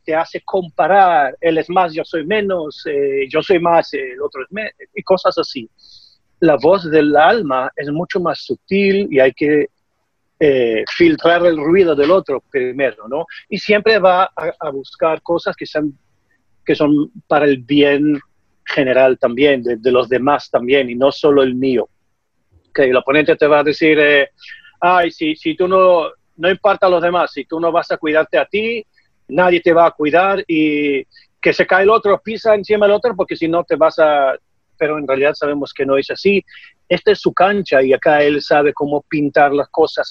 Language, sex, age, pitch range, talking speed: Spanish, male, 40-59, 145-190 Hz, 200 wpm